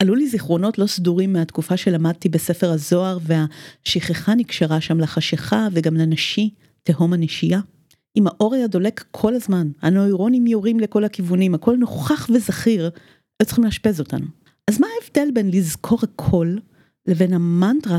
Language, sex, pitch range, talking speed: Hebrew, female, 165-215 Hz, 140 wpm